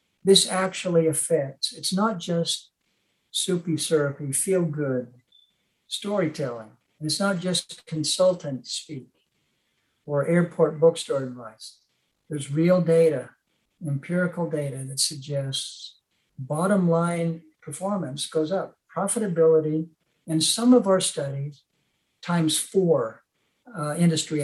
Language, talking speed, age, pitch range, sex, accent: English, 105 wpm, 60-79, 140-170 Hz, male, American